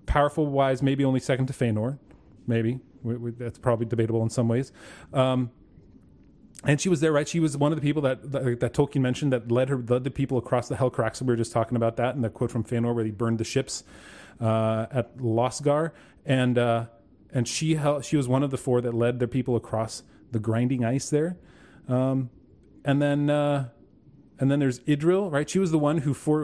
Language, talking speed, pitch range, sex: English, 220 wpm, 120-145 Hz, male